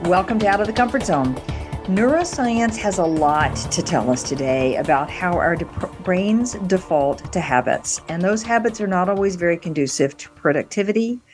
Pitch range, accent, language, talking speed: 155-205 Hz, American, English, 170 wpm